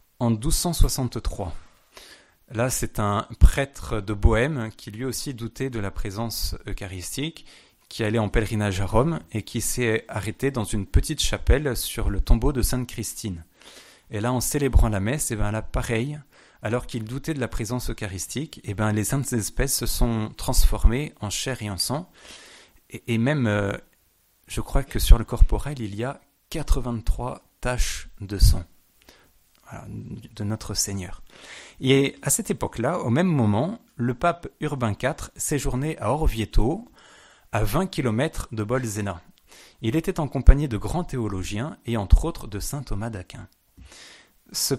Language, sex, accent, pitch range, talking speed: French, male, French, 105-135 Hz, 160 wpm